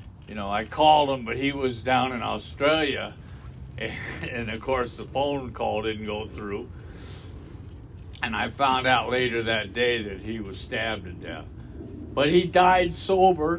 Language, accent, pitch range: English, American, 105-170 Hz